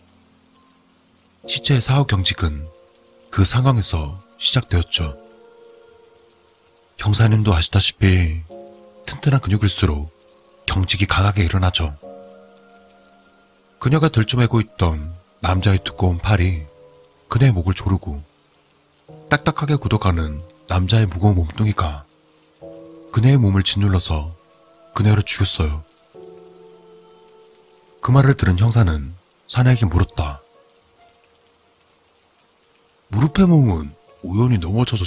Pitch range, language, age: 85-125 Hz, Korean, 30-49